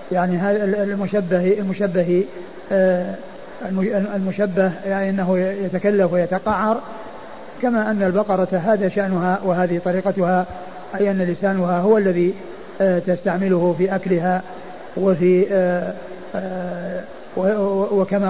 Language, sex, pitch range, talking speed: Arabic, male, 180-200 Hz, 80 wpm